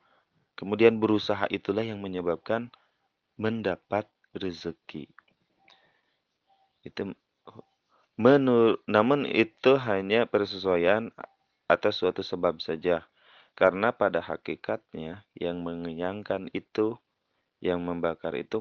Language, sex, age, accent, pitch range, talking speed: Indonesian, male, 30-49, native, 85-110 Hz, 85 wpm